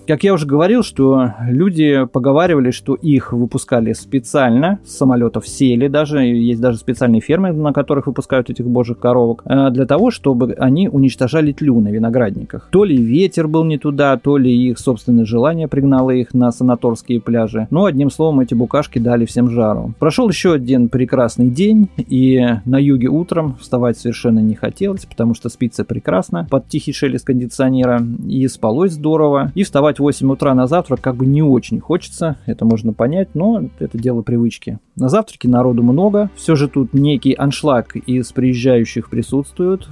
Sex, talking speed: male, 165 wpm